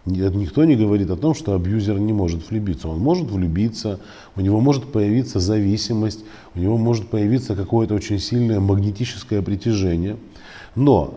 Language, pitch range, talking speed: Russian, 95-120 Hz, 150 wpm